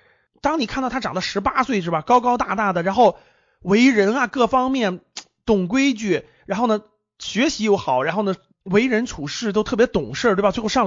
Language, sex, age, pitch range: Chinese, male, 30-49, 160-245 Hz